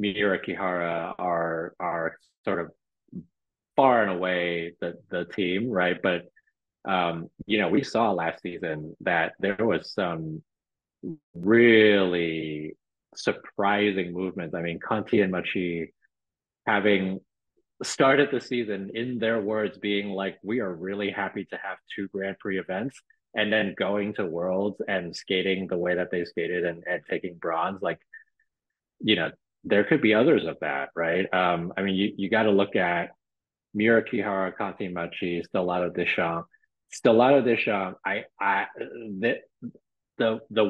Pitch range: 90-115 Hz